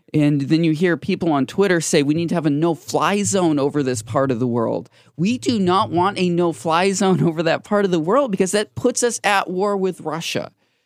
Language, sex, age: English, male, 20-39